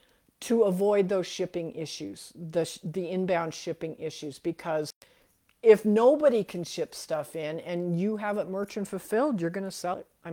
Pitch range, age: 155-190 Hz, 50-69